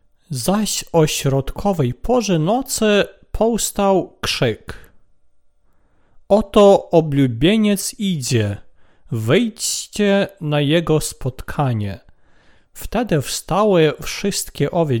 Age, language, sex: 40-59, Polish, male